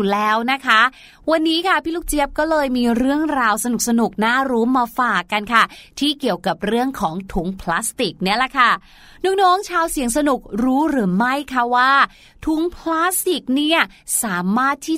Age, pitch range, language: 20-39, 245-315 Hz, Thai